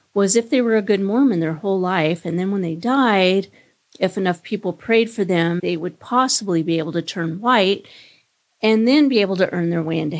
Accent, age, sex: American, 40-59, female